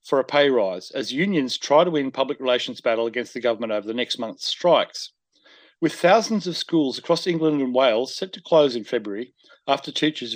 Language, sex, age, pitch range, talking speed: English, male, 40-59, 120-160 Hz, 205 wpm